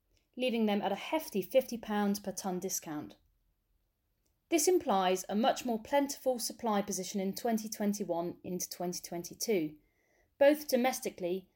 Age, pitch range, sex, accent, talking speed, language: 30-49, 180-240 Hz, female, British, 120 wpm, English